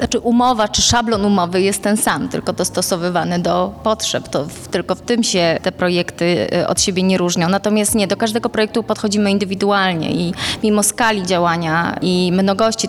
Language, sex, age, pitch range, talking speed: Polish, female, 20-39, 190-220 Hz, 170 wpm